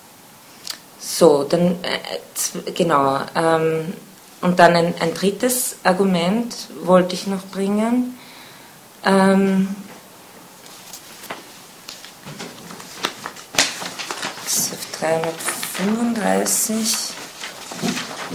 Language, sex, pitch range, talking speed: German, female, 165-215 Hz, 55 wpm